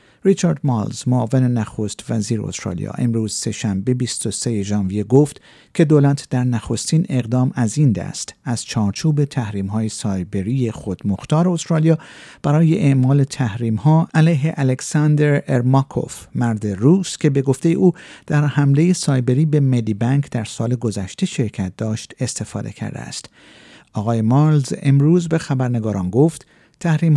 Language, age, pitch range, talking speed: Persian, 50-69, 115-150 Hz, 130 wpm